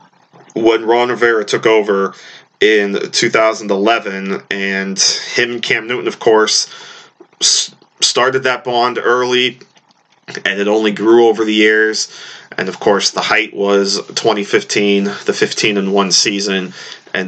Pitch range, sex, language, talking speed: 100-125 Hz, male, English, 130 wpm